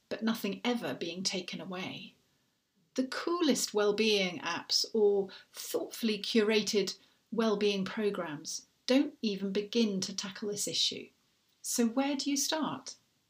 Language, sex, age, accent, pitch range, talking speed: English, female, 40-59, British, 200-265 Hz, 120 wpm